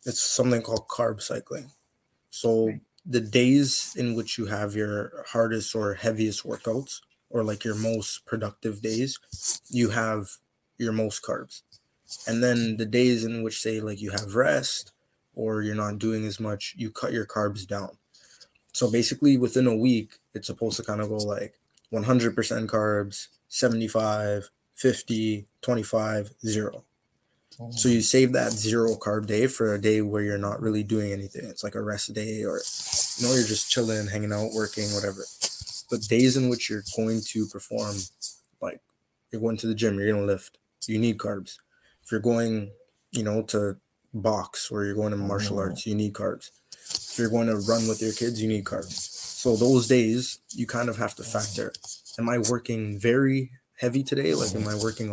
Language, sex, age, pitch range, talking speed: English, male, 20-39, 105-120 Hz, 180 wpm